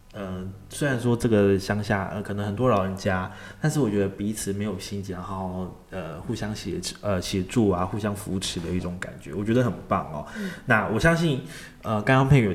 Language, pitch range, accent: Chinese, 95-115 Hz, native